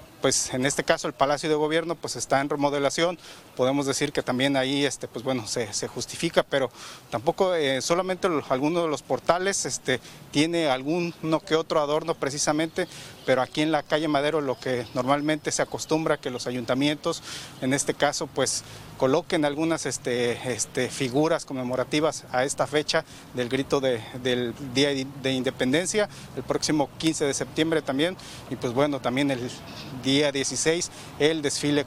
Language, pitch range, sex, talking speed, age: Spanish, 130-160 Hz, male, 155 wpm, 40-59